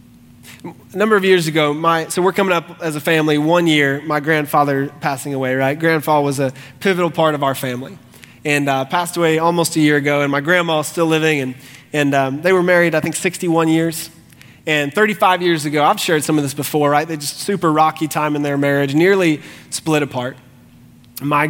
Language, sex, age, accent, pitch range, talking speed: English, male, 20-39, American, 125-175 Hz, 205 wpm